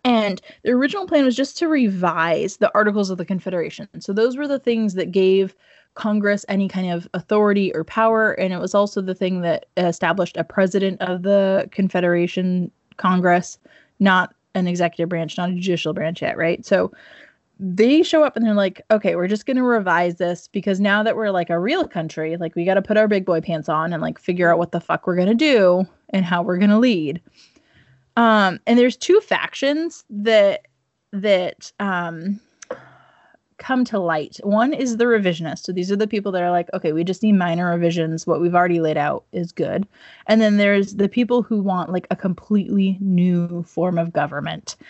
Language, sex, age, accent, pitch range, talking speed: English, female, 20-39, American, 175-220 Hz, 200 wpm